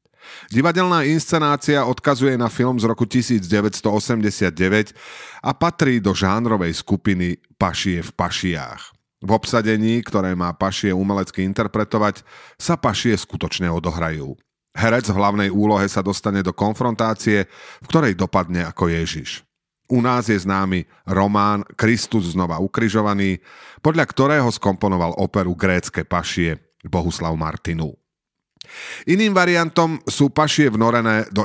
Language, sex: Slovak, male